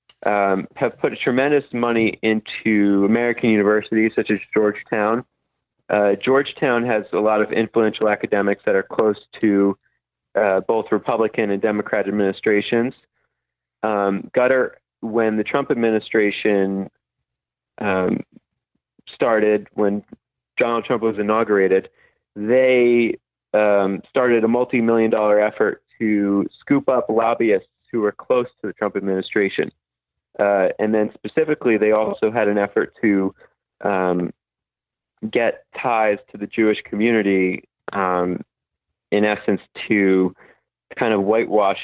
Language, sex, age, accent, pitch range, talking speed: English, male, 30-49, American, 95-110 Hz, 120 wpm